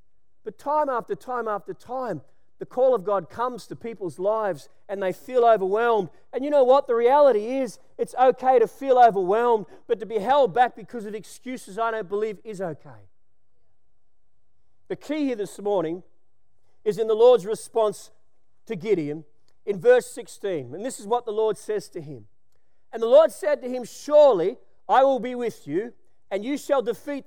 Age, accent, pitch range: 40-59, Australian, 215-280 Hz